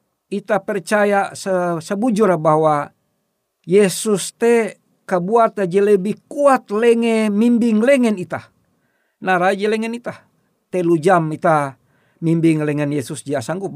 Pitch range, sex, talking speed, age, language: 150-200 Hz, male, 110 wpm, 50-69, Indonesian